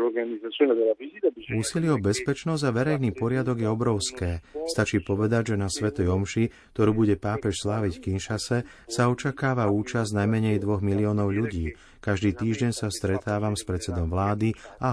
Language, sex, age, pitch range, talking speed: Slovak, male, 30-49, 100-125 Hz, 135 wpm